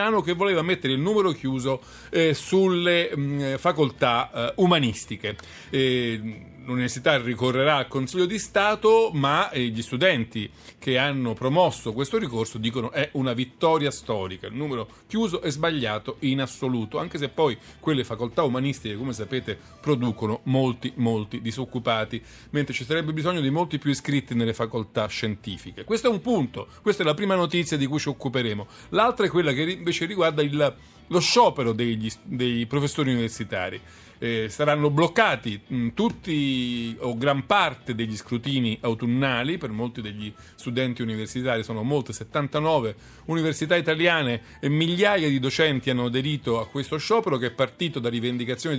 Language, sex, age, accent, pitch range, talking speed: Italian, male, 40-59, native, 115-155 Hz, 150 wpm